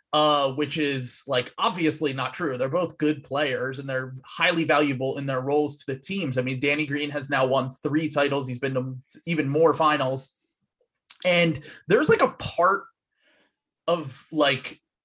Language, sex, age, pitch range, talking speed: English, male, 30-49, 135-170 Hz, 170 wpm